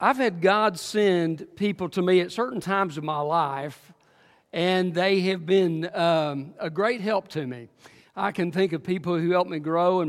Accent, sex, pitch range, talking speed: American, male, 155-195 Hz, 195 wpm